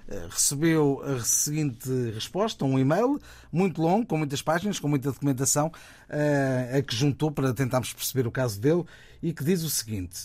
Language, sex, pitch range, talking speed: Portuguese, male, 125-155 Hz, 165 wpm